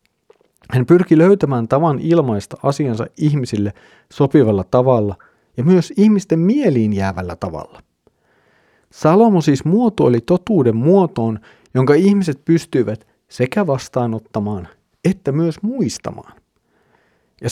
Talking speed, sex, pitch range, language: 100 wpm, male, 110-160 Hz, Finnish